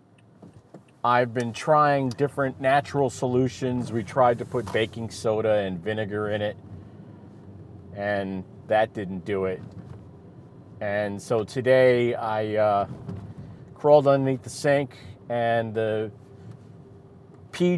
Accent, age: American, 40-59